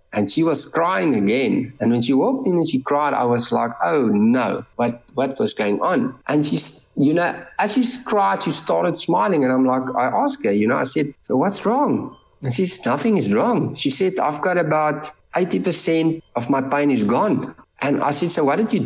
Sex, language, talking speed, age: male, English, 220 wpm, 60-79